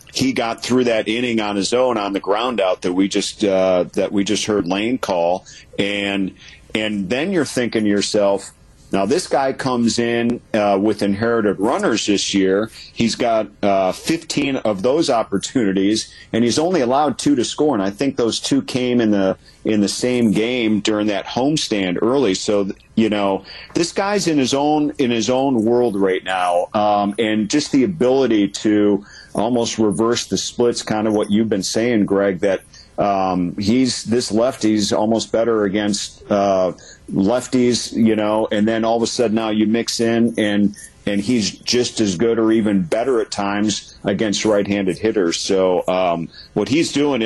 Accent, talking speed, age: American, 180 wpm, 40-59